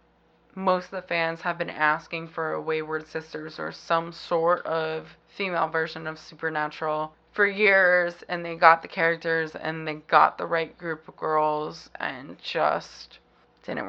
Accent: American